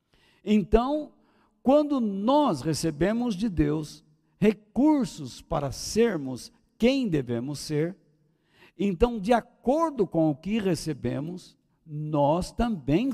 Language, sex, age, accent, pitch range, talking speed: Portuguese, male, 60-79, Brazilian, 155-235 Hz, 95 wpm